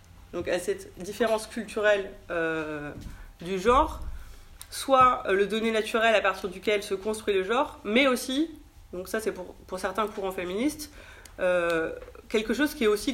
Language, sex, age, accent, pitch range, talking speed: French, female, 30-49, French, 170-220 Hz, 165 wpm